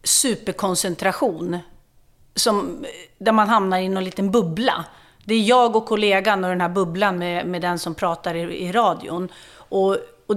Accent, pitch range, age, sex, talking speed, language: native, 175-220 Hz, 30-49, female, 160 wpm, Swedish